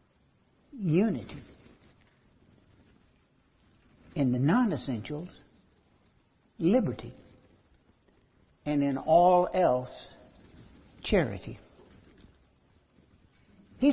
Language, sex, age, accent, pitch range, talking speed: English, male, 60-79, American, 115-185 Hz, 45 wpm